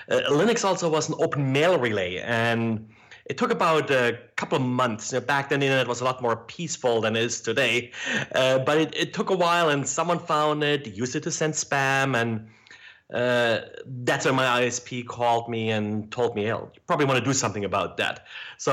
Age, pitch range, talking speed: 30-49, 115-150 Hz, 220 wpm